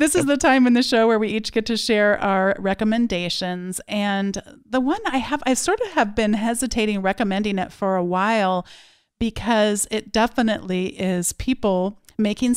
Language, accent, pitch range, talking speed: English, American, 195-250 Hz, 175 wpm